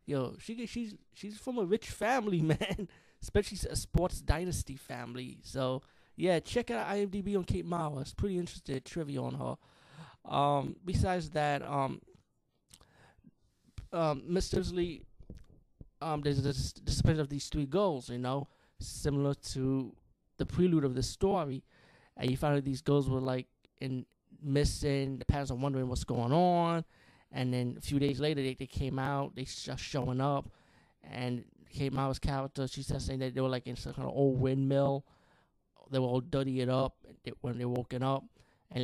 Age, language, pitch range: 20-39, English, 125-150 Hz